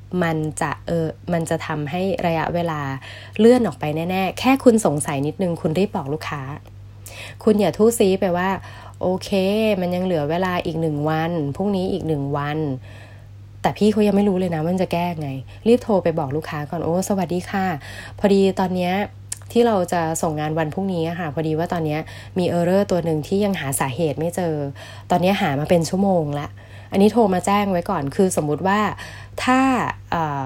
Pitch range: 145-185 Hz